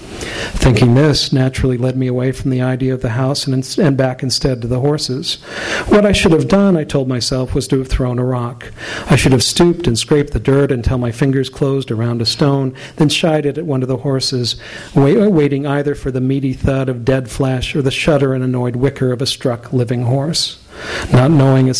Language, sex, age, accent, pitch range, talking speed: English, male, 50-69, American, 125-145 Hz, 220 wpm